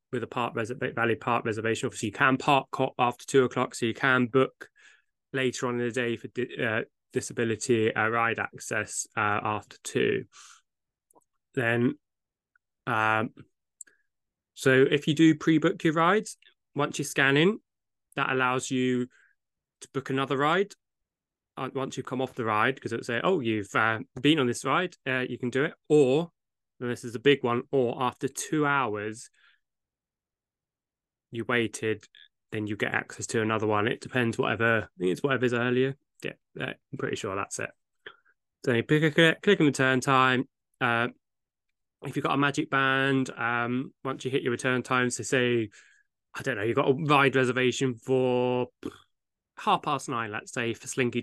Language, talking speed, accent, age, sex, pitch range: English, 170 wpm, British, 20-39, male, 120-140 Hz